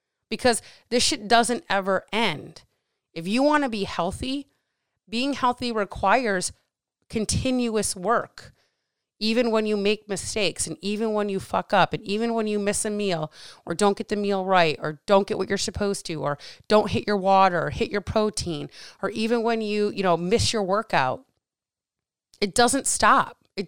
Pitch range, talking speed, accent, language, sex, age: 185-225 Hz, 175 wpm, American, English, female, 30-49